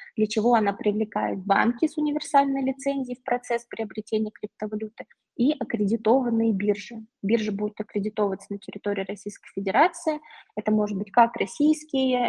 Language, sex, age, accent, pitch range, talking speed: Russian, female, 20-39, native, 200-230 Hz, 130 wpm